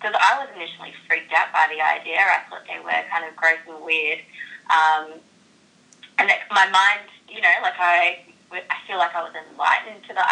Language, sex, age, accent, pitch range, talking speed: English, female, 20-39, Australian, 160-195 Hz, 200 wpm